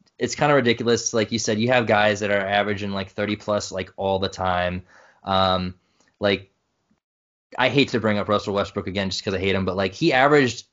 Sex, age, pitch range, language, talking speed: male, 20-39, 100-130 Hz, English, 220 wpm